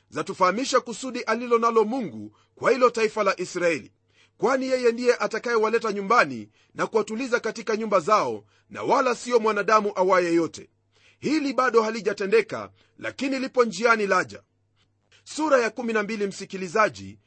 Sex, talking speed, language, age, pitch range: male, 130 wpm, Swahili, 40-59, 175-240 Hz